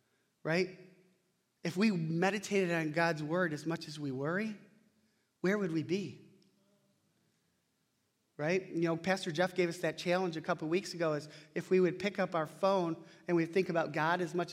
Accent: American